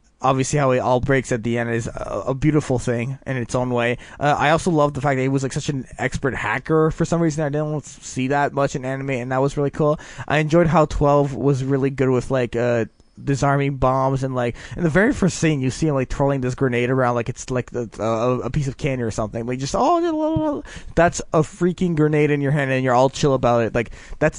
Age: 20-39